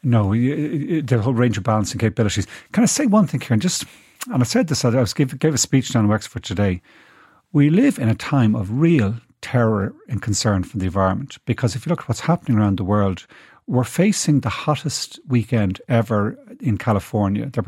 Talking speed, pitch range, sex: 205 wpm, 110-145 Hz, male